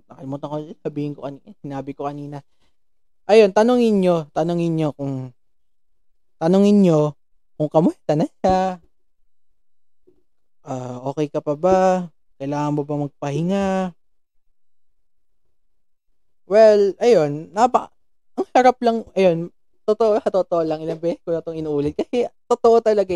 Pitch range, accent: 135-185 Hz, native